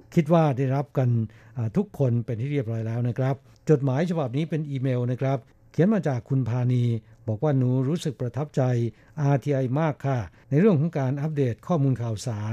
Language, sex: Thai, male